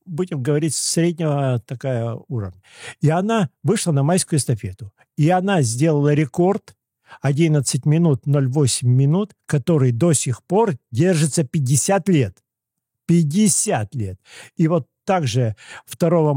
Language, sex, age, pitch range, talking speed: Russian, male, 50-69, 130-185 Hz, 115 wpm